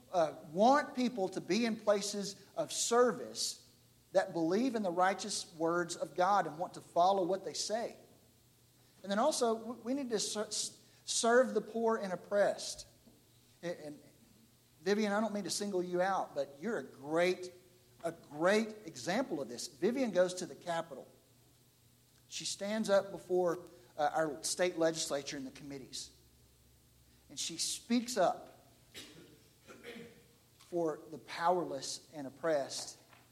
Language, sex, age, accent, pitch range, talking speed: English, male, 50-69, American, 140-205 Hz, 145 wpm